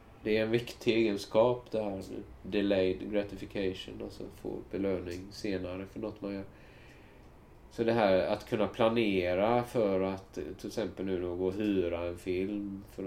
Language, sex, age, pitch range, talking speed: Swedish, male, 30-49, 95-120 Hz, 160 wpm